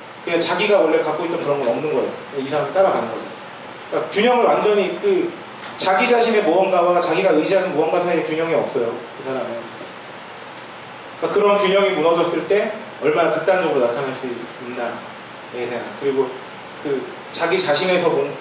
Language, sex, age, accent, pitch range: Korean, male, 30-49, native, 155-230 Hz